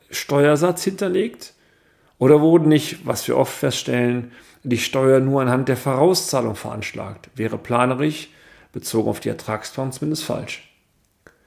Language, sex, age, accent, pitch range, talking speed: German, male, 40-59, German, 115-150 Hz, 125 wpm